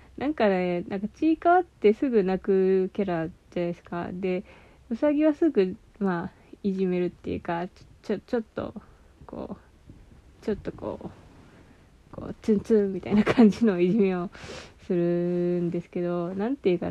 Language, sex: Japanese, female